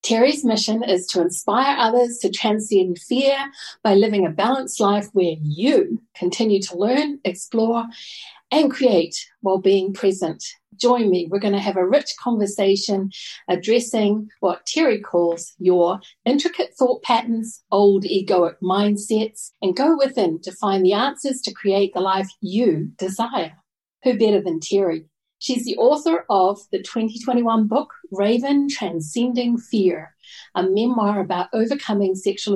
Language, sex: English, female